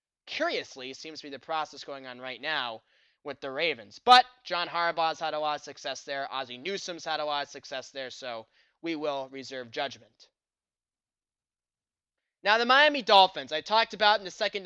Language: English